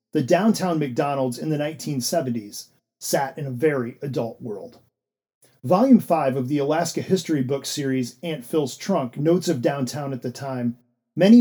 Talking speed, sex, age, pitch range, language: 160 wpm, male, 40-59, 130-170 Hz, English